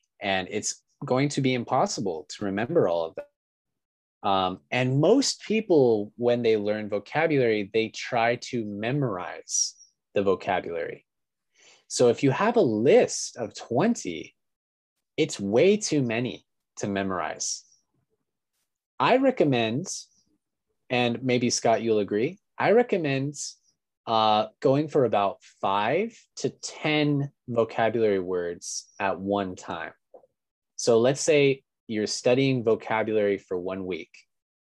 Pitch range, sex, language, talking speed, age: 100-135 Hz, male, English, 120 wpm, 20-39